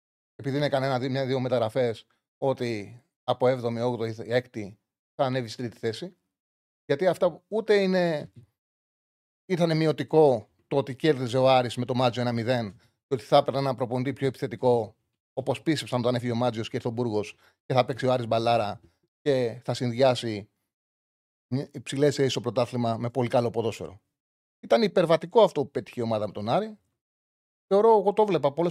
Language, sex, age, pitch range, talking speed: Greek, male, 30-49, 120-170 Hz, 170 wpm